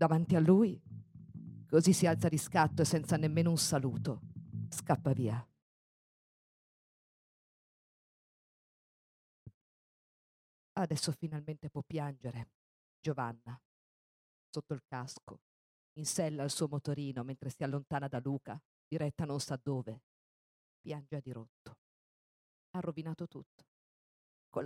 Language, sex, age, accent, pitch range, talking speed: Italian, female, 40-59, native, 135-175 Hz, 105 wpm